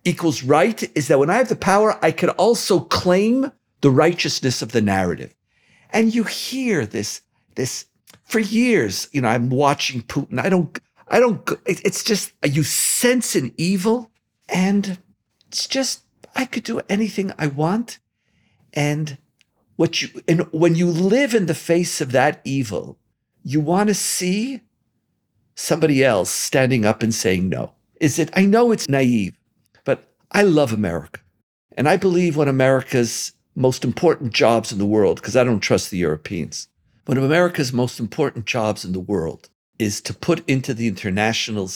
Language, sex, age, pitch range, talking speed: English, male, 50-69, 115-195 Hz, 165 wpm